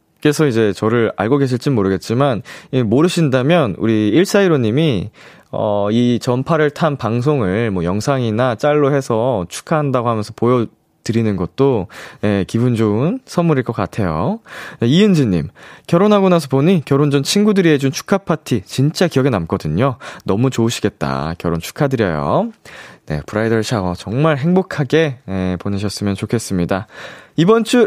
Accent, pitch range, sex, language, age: native, 110-170 Hz, male, Korean, 20-39